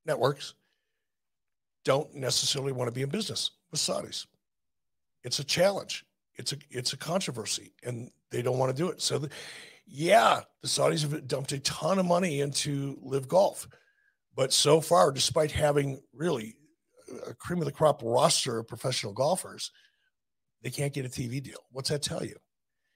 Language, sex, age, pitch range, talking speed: English, male, 50-69, 125-155 Hz, 165 wpm